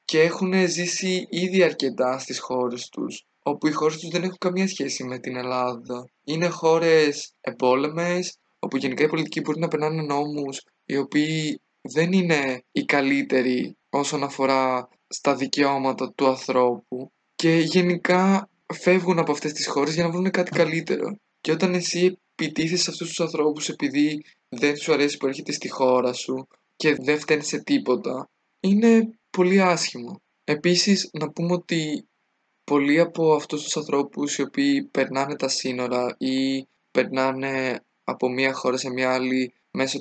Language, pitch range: Greek, 135-175 Hz